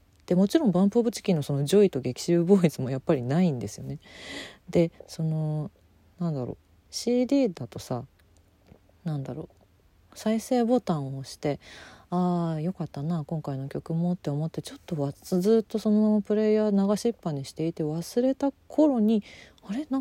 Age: 40-59